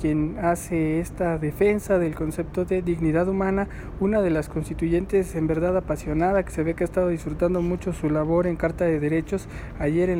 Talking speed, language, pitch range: 190 wpm, English, 160-180 Hz